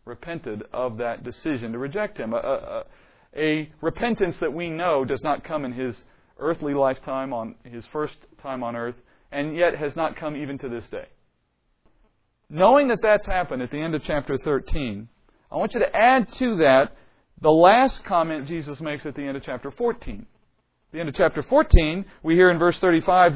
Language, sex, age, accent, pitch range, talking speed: English, male, 40-59, American, 135-185 Hz, 195 wpm